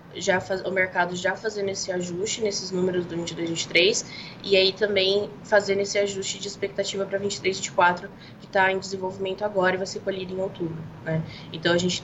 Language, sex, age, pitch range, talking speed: Portuguese, female, 20-39, 175-195 Hz, 205 wpm